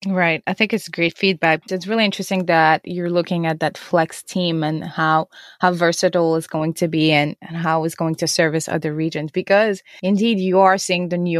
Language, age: English, 20-39